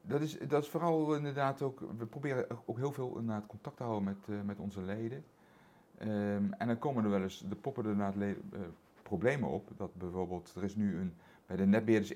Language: Dutch